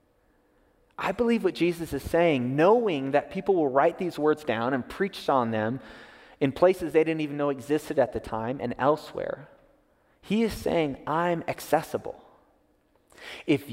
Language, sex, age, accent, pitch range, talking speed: English, male, 30-49, American, 140-180 Hz, 155 wpm